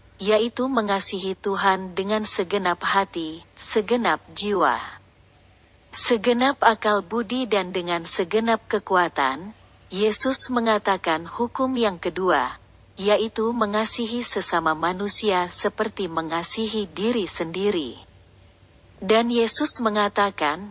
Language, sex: Indonesian, female